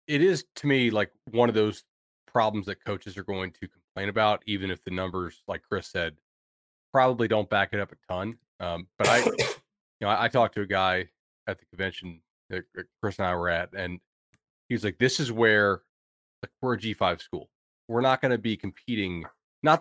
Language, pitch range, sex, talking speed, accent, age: English, 90-115 Hz, male, 210 wpm, American, 30-49